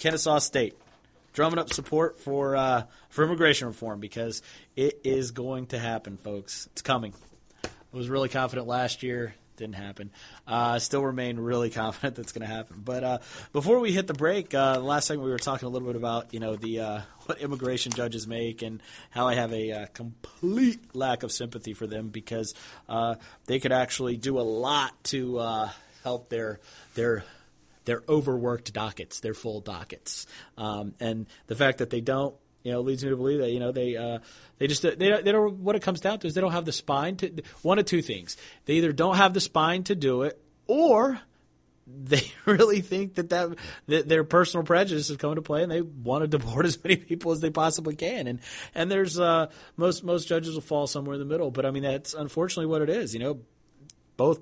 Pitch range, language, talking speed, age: 115-160 Hz, English, 215 wpm, 30-49